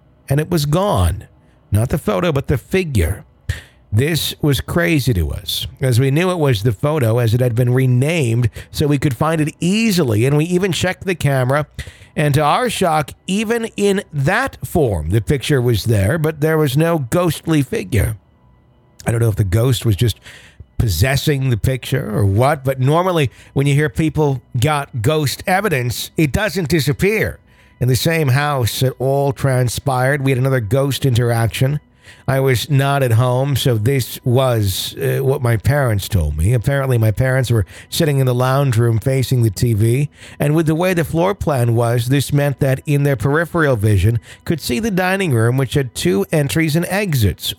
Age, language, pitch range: 50-69, English, 120-155 Hz